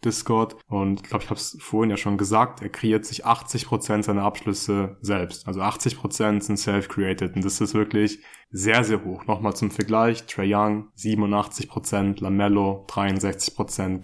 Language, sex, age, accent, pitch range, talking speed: German, male, 20-39, German, 100-115 Hz, 160 wpm